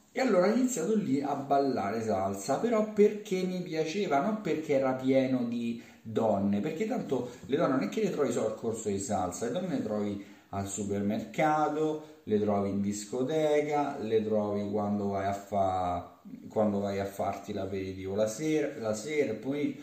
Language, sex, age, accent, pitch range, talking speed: Italian, male, 30-49, native, 105-155 Hz, 180 wpm